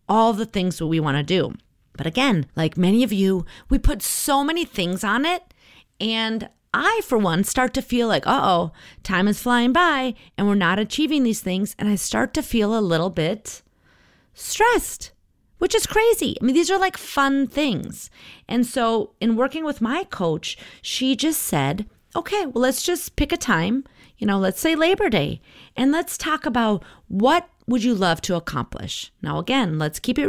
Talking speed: 195 wpm